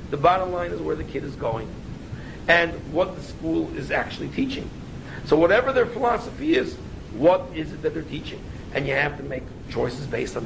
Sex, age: male, 50-69